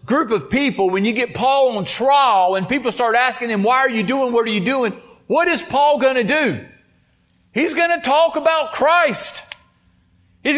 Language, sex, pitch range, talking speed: English, male, 250-320 Hz, 200 wpm